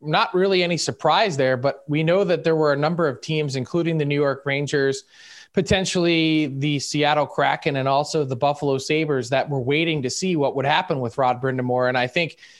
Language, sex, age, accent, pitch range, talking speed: English, male, 20-39, American, 140-165 Hz, 205 wpm